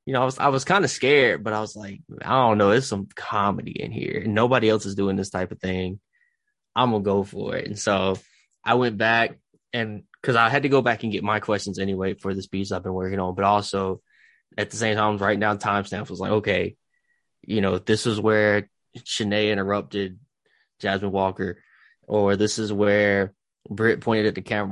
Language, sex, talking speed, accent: English, male, 220 wpm, American